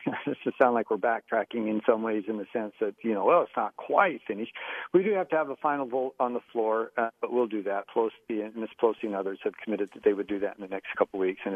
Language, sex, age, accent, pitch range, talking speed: English, male, 50-69, American, 110-140 Hz, 285 wpm